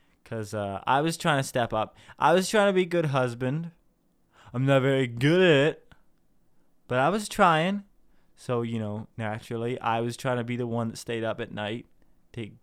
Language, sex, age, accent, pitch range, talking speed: English, male, 20-39, American, 110-165 Hz, 205 wpm